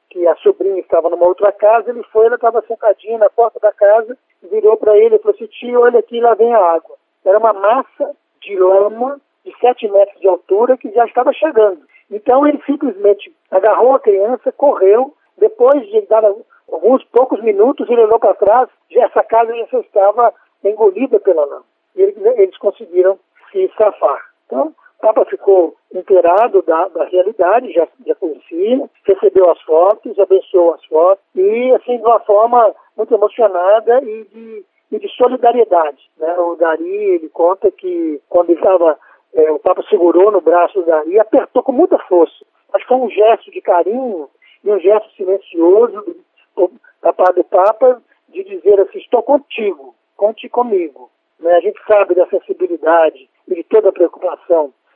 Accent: Brazilian